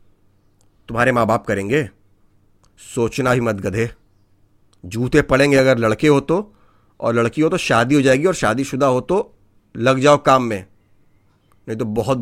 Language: English